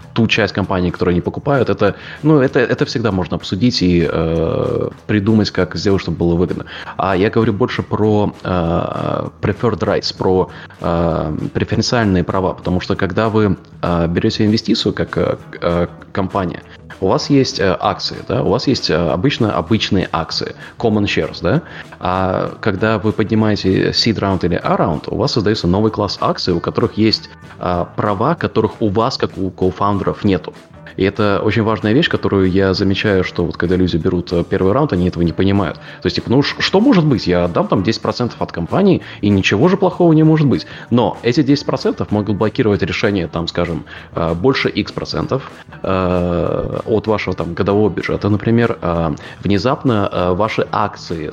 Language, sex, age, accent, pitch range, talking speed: Russian, male, 20-39, native, 90-110 Hz, 165 wpm